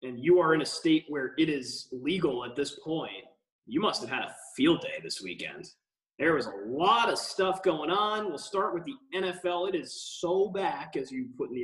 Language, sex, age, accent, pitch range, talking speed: English, male, 20-39, American, 160-240 Hz, 225 wpm